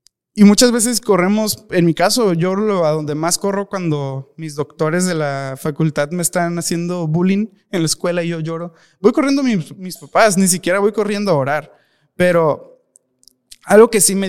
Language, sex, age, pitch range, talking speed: Spanish, male, 20-39, 160-200 Hz, 185 wpm